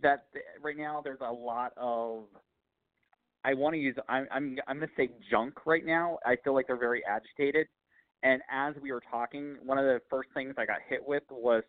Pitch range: 110-130 Hz